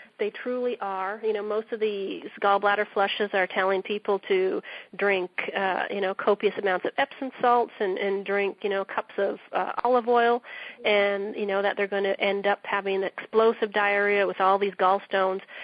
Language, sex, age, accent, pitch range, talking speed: English, female, 30-49, American, 190-215 Hz, 190 wpm